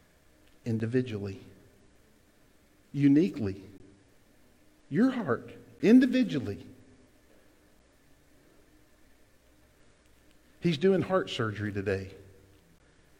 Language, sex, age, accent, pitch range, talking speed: English, male, 50-69, American, 100-140 Hz, 45 wpm